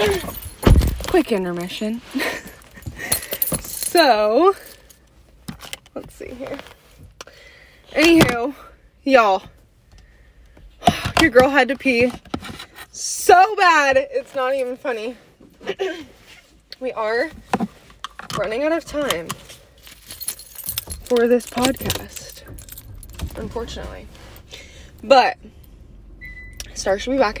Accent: American